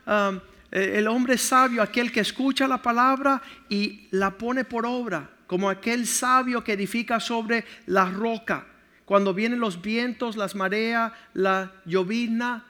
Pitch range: 195-245 Hz